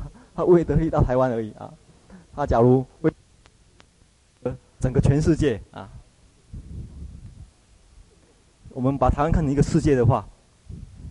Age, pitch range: 30-49, 110-150 Hz